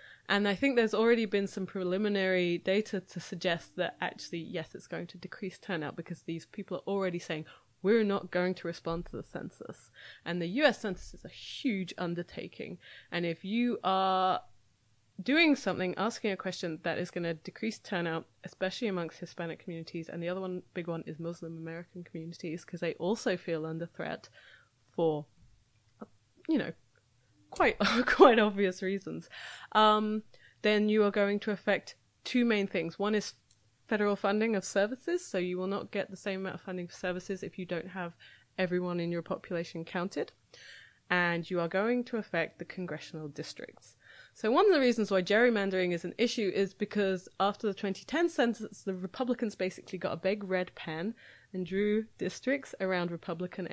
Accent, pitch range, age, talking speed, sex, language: British, 170-210 Hz, 20-39, 175 wpm, female, English